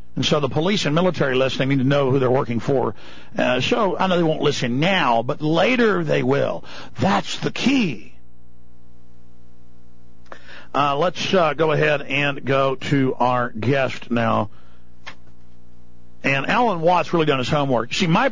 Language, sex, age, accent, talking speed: English, male, 50-69, American, 160 wpm